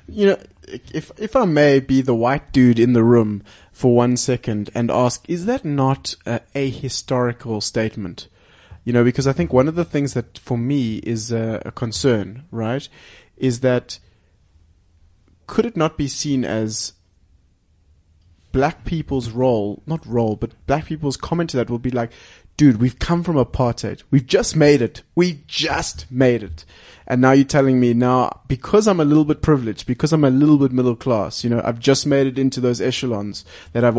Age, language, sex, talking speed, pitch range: 20-39, English, male, 190 wpm, 115-145 Hz